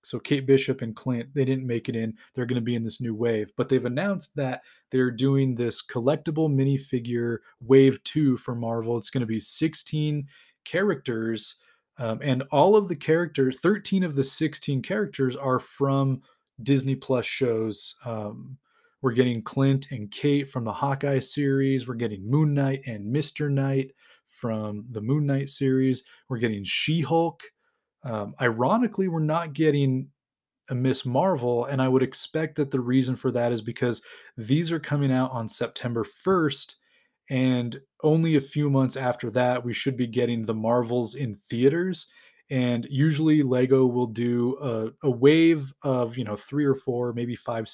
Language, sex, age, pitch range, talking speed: English, male, 20-39, 120-145 Hz, 170 wpm